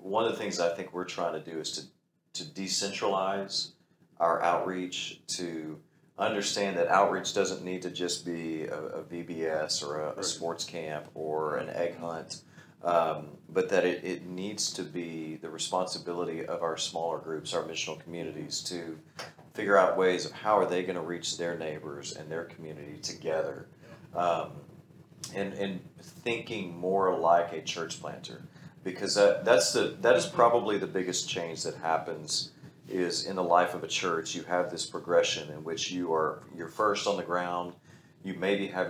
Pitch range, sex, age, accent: 80-95 Hz, male, 40-59, American